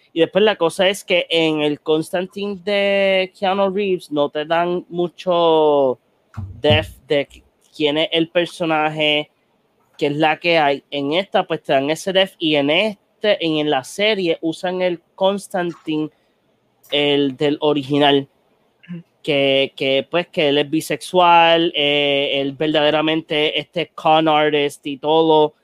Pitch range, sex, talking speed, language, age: 140-170 Hz, male, 145 wpm, Spanish, 30-49